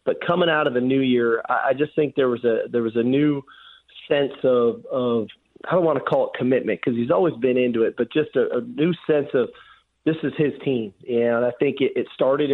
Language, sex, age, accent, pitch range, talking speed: English, male, 30-49, American, 120-140 Hz, 240 wpm